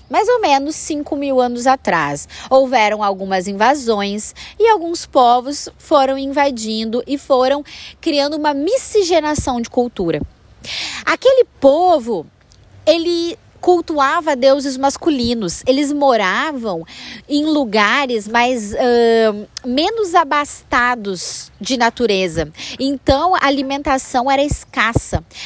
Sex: female